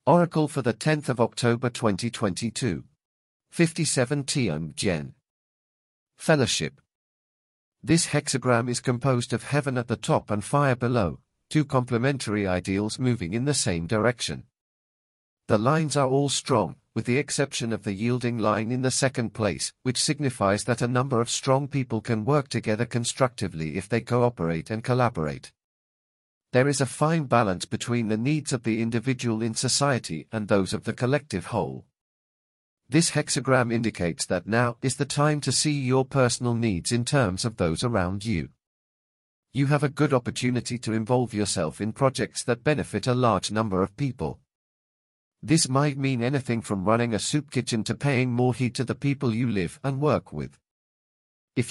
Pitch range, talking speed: 110-135 Hz, 165 wpm